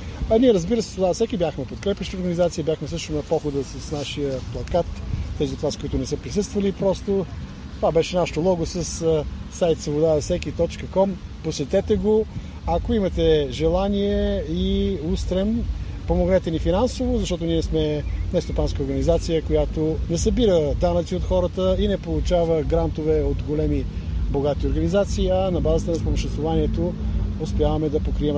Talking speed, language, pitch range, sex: 145 wpm, Bulgarian, 145-195 Hz, male